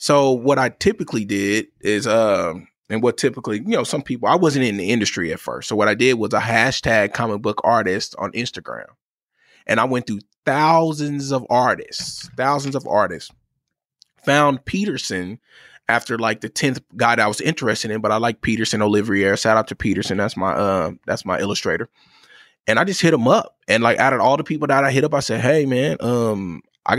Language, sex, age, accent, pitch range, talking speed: English, male, 20-39, American, 110-135 Hz, 210 wpm